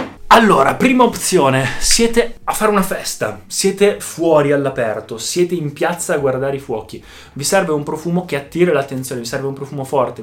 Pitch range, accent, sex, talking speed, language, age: 115-155 Hz, native, male, 175 wpm, Italian, 20-39